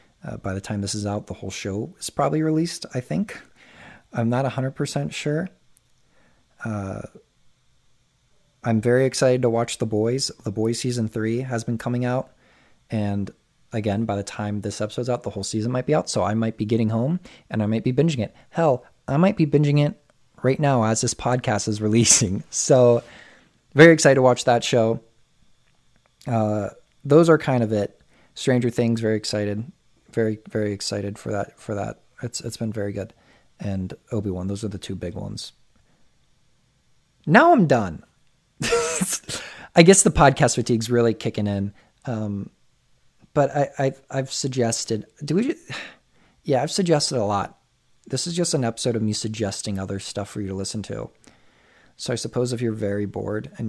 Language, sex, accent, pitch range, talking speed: English, male, American, 105-135 Hz, 175 wpm